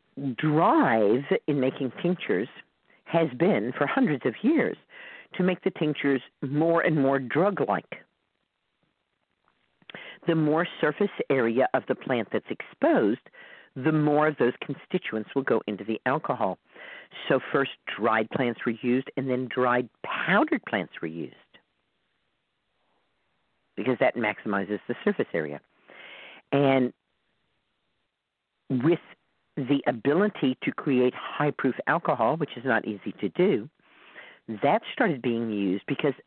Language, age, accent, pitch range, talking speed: English, 50-69, American, 125-155 Hz, 125 wpm